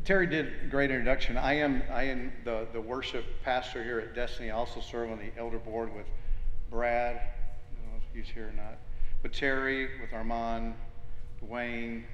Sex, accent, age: male, American, 50-69